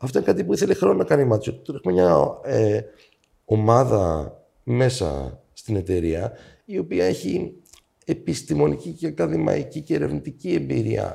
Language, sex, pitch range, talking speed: Greek, male, 95-130 Hz, 140 wpm